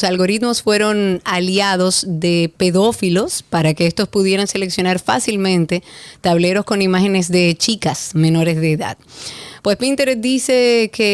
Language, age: Spanish, 30-49